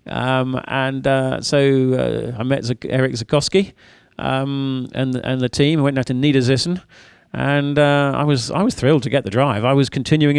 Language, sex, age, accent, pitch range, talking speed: English, male, 40-59, British, 120-150 Hz, 200 wpm